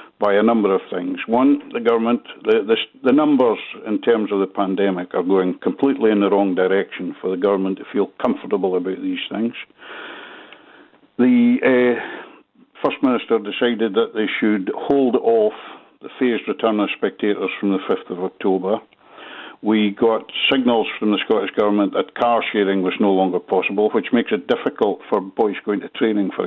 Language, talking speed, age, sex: English, 170 wpm, 60-79, male